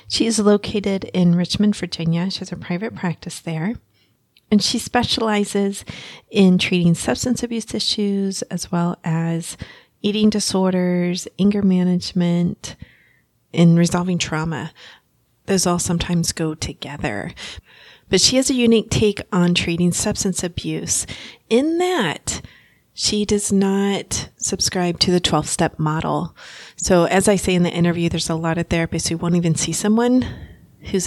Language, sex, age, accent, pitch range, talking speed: English, female, 30-49, American, 170-205 Hz, 140 wpm